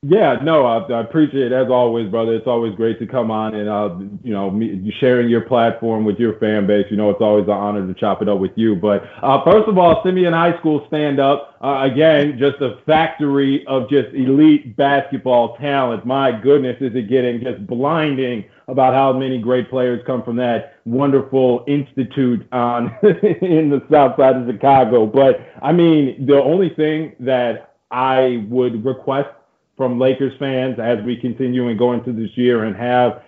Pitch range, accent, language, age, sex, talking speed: 115-140 Hz, American, English, 30-49, male, 190 wpm